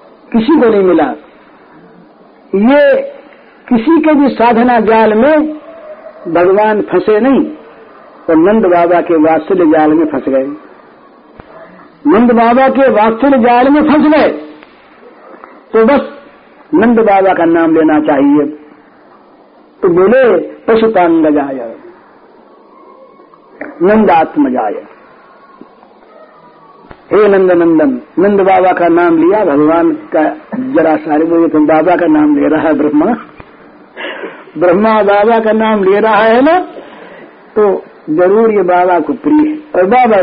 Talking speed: 120 wpm